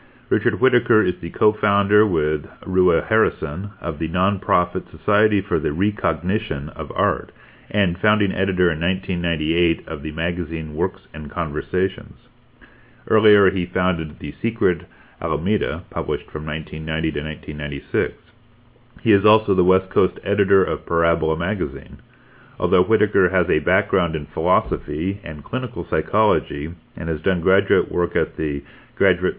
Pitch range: 80-100 Hz